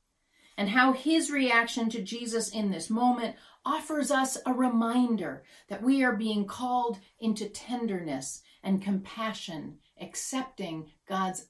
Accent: American